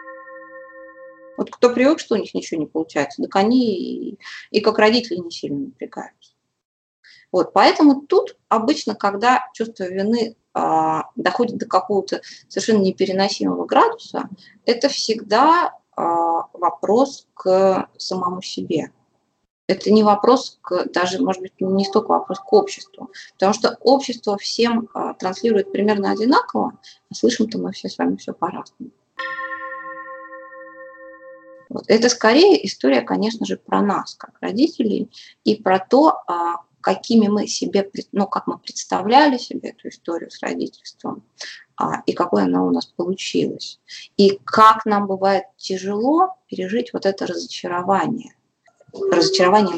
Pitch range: 190-265 Hz